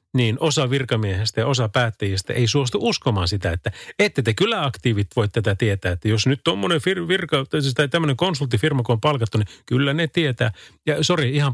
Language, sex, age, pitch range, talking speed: Finnish, male, 30-49, 110-150 Hz, 185 wpm